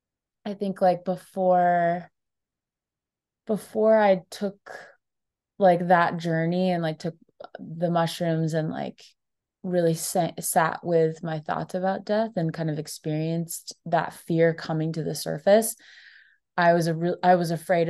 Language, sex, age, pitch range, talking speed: English, female, 20-39, 160-180 Hz, 135 wpm